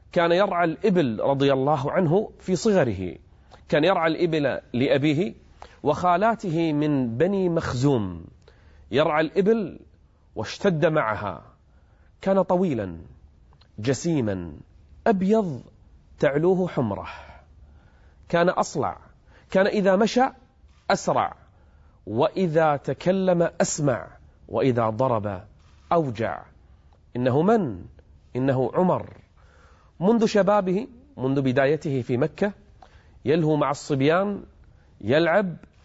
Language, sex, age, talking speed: Arabic, male, 30-49, 85 wpm